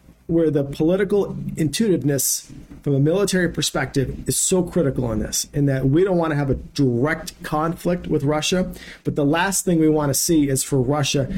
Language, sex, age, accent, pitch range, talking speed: English, male, 40-59, American, 145-185 Hz, 190 wpm